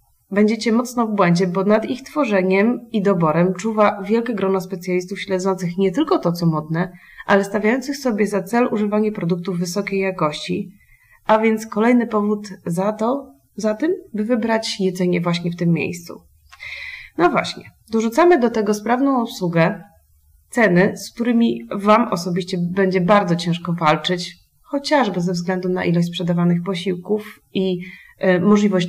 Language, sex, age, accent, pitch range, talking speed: Polish, female, 30-49, native, 180-240 Hz, 140 wpm